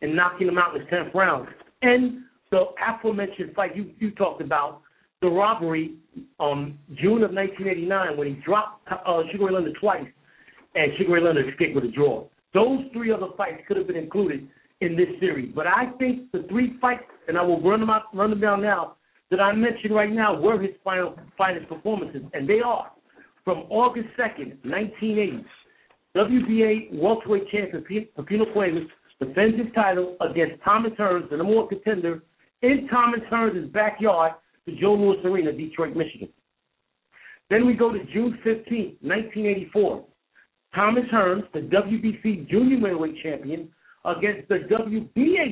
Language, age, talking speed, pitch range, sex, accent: English, 60-79, 160 wpm, 170-220 Hz, male, American